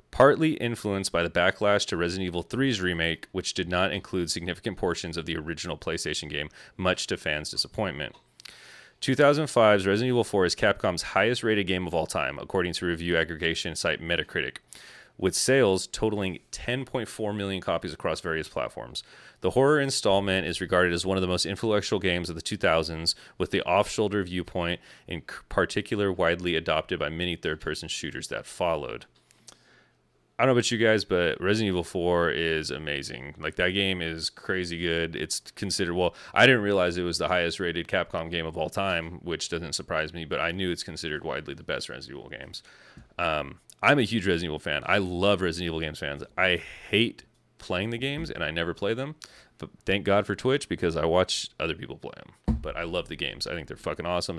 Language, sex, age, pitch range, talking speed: English, male, 30-49, 85-105 Hz, 190 wpm